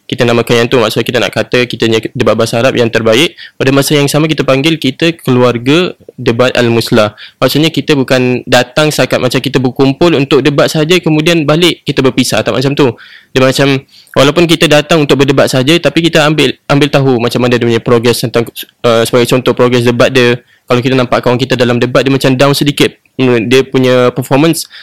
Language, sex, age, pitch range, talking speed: Malay, male, 10-29, 125-150 Hz, 200 wpm